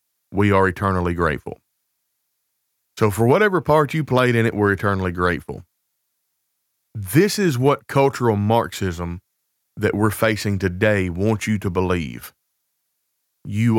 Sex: male